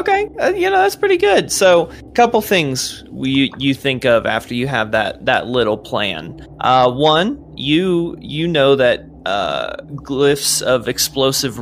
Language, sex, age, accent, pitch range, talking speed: English, male, 20-39, American, 125-155 Hz, 165 wpm